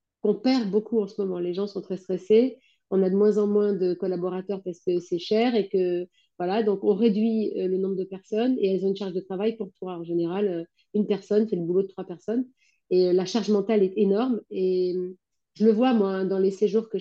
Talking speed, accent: 235 wpm, French